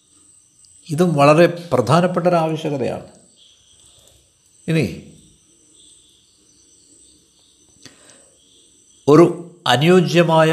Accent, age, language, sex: native, 60-79, Malayalam, male